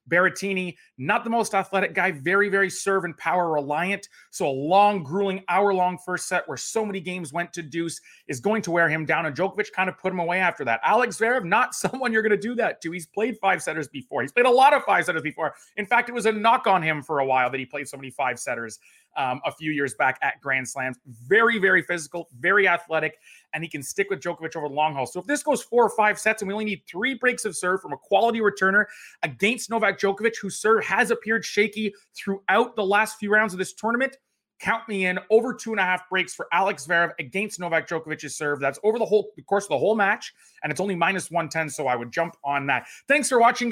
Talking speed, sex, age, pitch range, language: 240 wpm, male, 30-49, 160-220 Hz, English